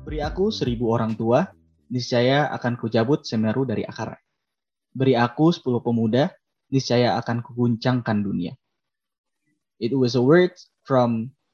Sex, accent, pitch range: male, native, 115-140 Hz